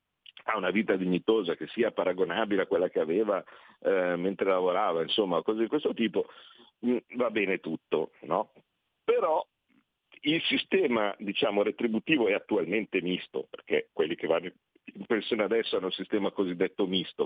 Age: 50-69